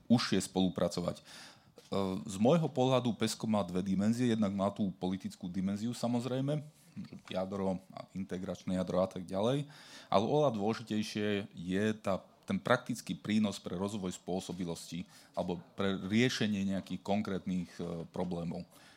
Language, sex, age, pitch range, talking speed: Slovak, male, 30-49, 95-115 Hz, 125 wpm